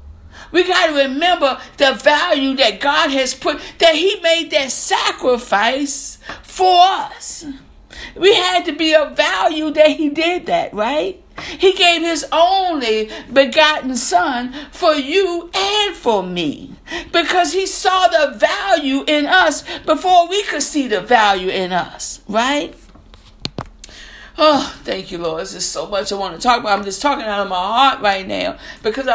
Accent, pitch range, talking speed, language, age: American, 250-335 Hz, 160 wpm, English, 60-79